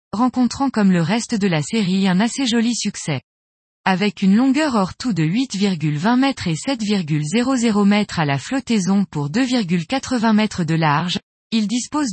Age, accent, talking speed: 20-39, French, 160 wpm